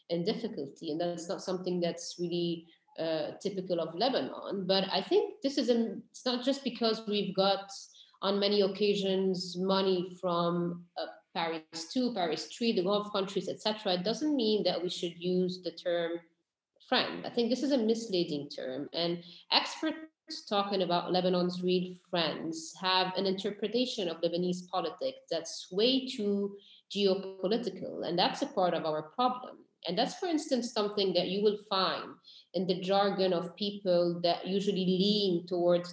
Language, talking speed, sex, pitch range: English, 160 wpm, female, 175-215 Hz